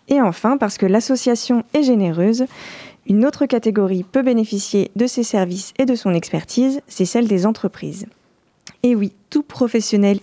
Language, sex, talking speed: French, female, 160 wpm